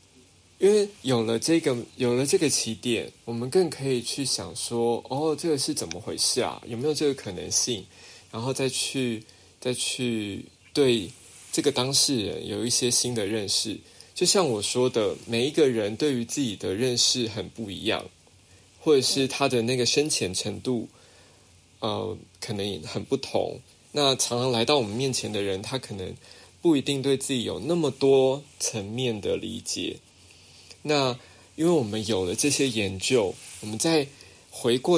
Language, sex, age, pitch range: Chinese, male, 20-39, 110-155 Hz